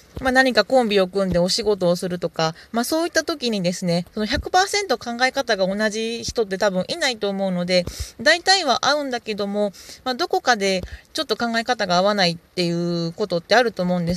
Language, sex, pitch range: Japanese, female, 190-270 Hz